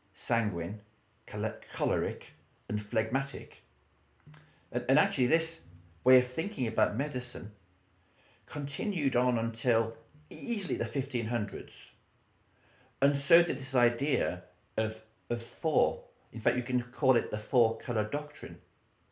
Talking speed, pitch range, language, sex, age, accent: 115 wpm, 95-125 Hz, English, male, 40-59, British